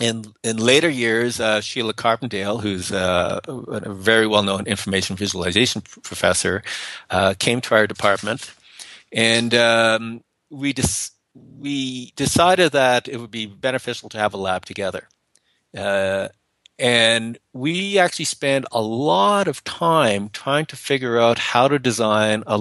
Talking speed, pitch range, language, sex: 145 wpm, 105-125 Hz, English, male